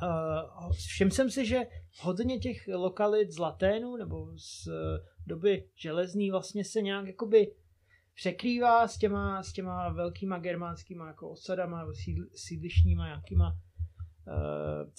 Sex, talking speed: male, 130 wpm